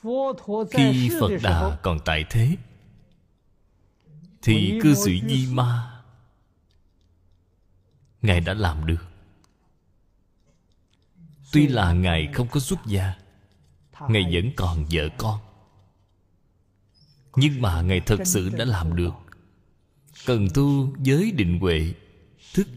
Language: Vietnamese